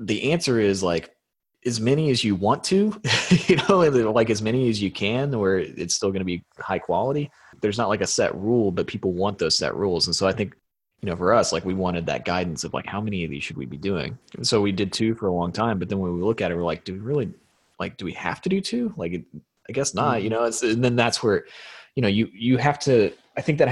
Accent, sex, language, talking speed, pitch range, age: American, male, English, 275 wpm, 90-115 Hz, 20-39